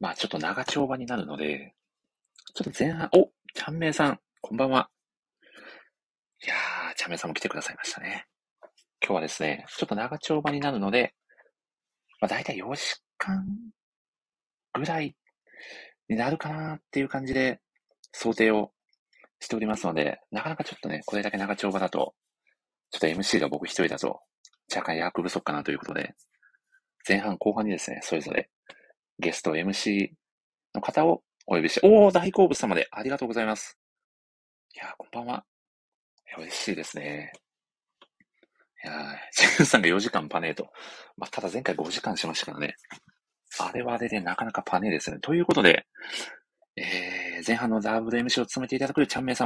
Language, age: Japanese, 40-59